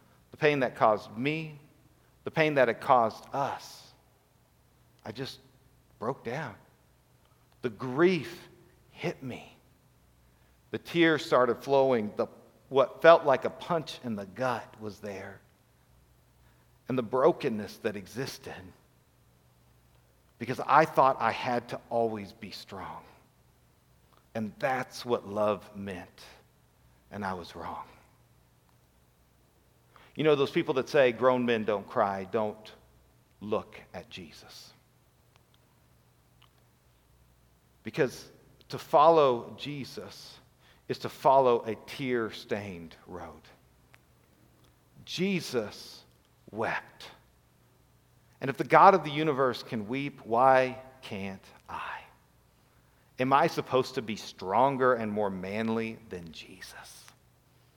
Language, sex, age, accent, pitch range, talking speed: English, male, 50-69, American, 85-135 Hz, 110 wpm